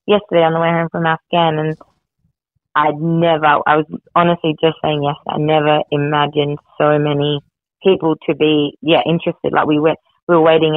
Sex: female